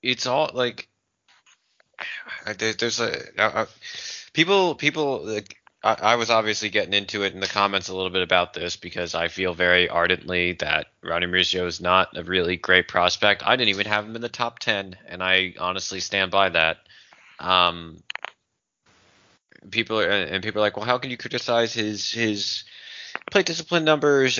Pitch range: 95-125 Hz